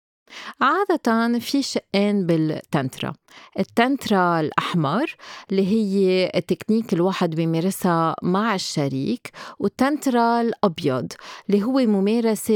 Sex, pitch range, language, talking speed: female, 170-230 Hz, Arabic, 85 wpm